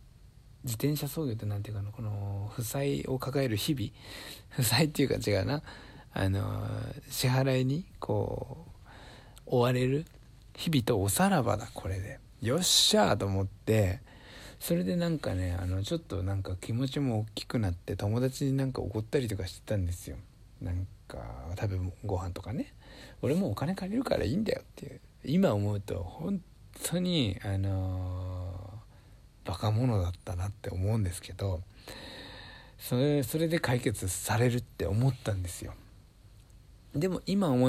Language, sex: Japanese, male